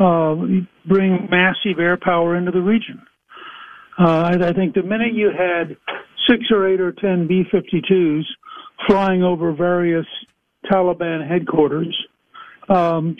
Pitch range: 175-210 Hz